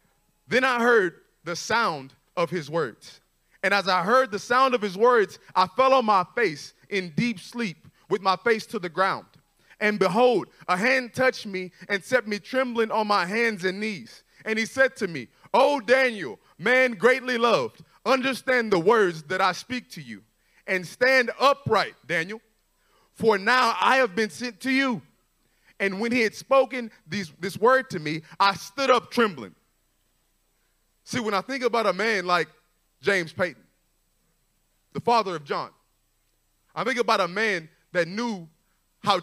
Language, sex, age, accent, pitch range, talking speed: English, male, 30-49, American, 180-235 Hz, 170 wpm